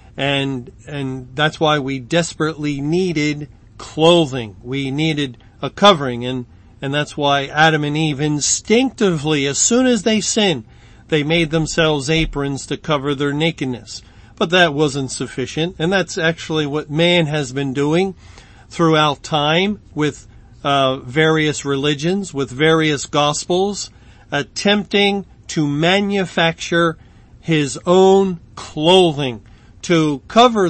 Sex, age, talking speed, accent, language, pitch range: male, 40-59, 120 wpm, American, English, 135-165 Hz